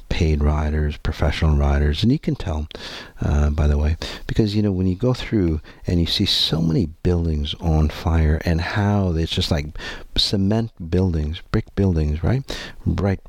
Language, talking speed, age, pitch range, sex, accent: English, 170 wpm, 50-69, 80-105 Hz, male, American